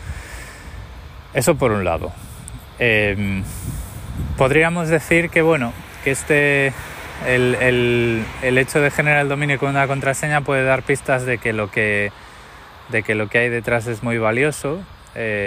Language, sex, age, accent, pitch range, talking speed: Spanish, male, 20-39, Spanish, 95-130 Hz, 150 wpm